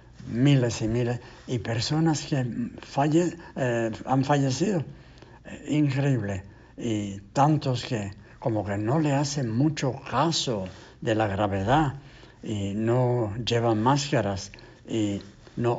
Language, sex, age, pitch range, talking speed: English, male, 60-79, 110-130 Hz, 115 wpm